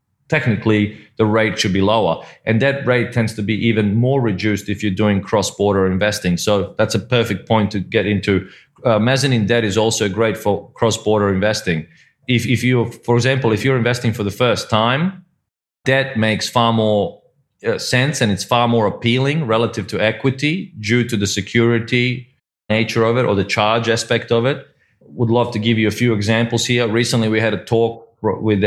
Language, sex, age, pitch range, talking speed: English, male, 30-49, 105-115 Hz, 190 wpm